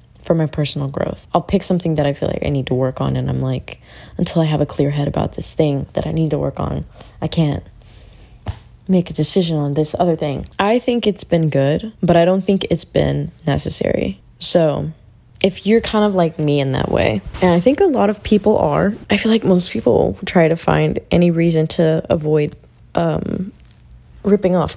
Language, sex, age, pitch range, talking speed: English, female, 20-39, 145-180 Hz, 215 wpm